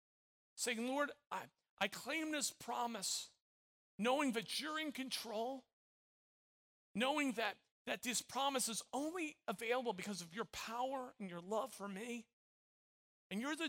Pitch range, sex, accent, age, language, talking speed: 205-265 Hz, male, American, 40-59, English, 140 wpm